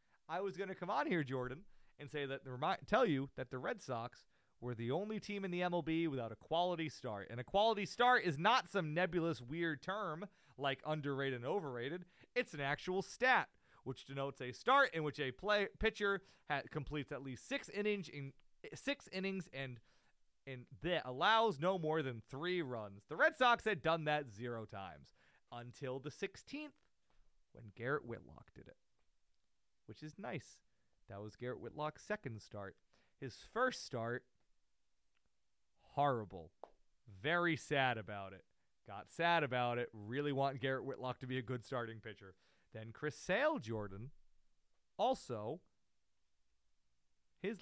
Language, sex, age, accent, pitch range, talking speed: English, male, 30-49, American, 110-175 Hz, 160 wpm